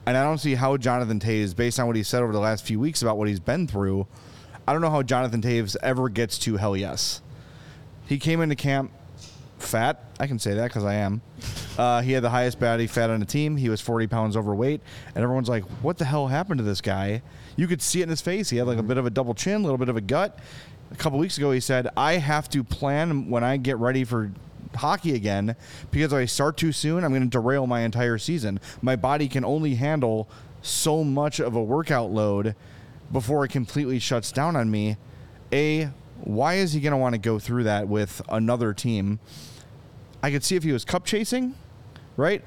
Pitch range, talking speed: 115-150 Hz, 230 wpm